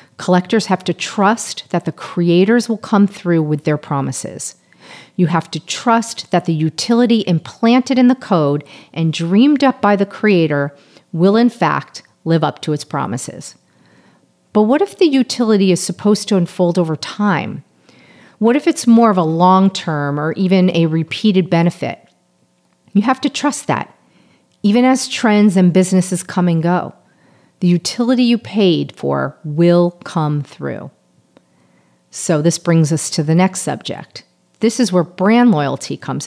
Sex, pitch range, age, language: female, 160-220 Hz, 40-59, English